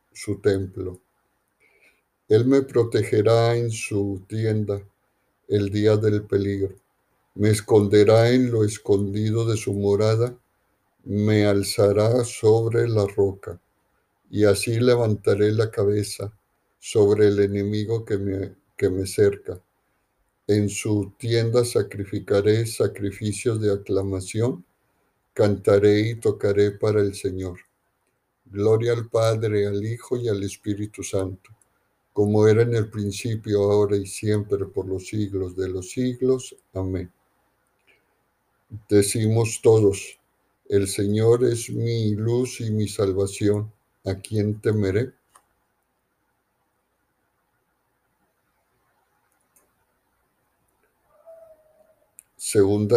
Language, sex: Spanish, male